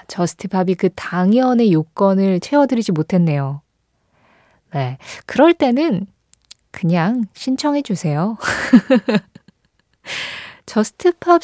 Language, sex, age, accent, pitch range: Korean, female, 20-39, native, 170-240 Hz